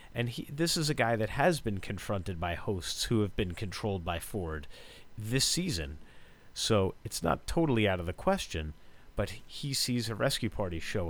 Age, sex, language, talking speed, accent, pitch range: 30-49, male, English, 190 wpm, American, 90-130 Hz